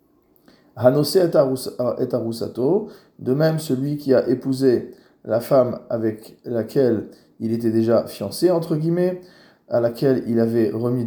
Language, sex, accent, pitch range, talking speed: French, male, French, 125-155 Hz, 130 wpm